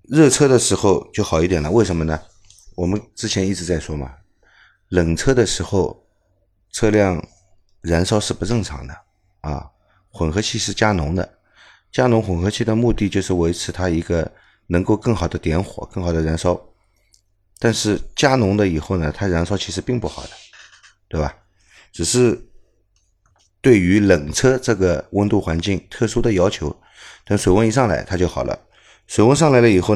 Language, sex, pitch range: Chinese, male, 85-105 Hz